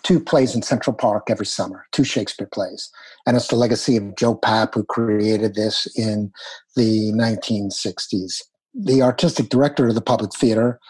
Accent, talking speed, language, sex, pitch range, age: American, 165 wpm, English, male, 110-130 Hz, 50-69